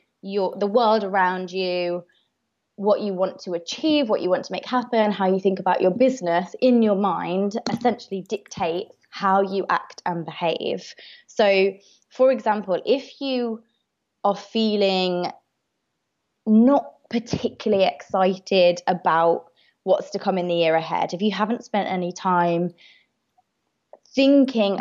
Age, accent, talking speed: 20-39, British, 135 wpm